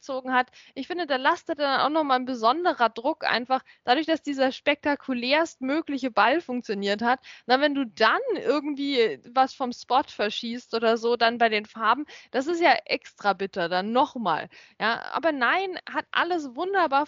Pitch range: 235-290 Hz